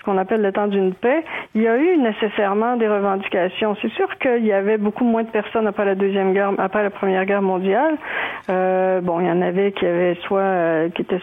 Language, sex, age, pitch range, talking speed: French, female, 40-59, 190-235 Hz, 230 wpm